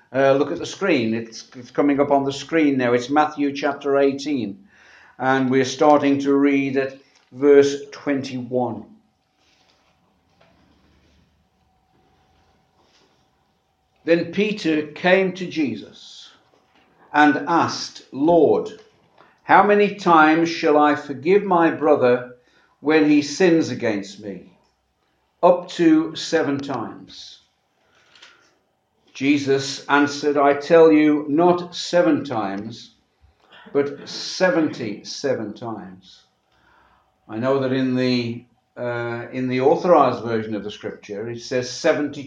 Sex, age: male, 60-79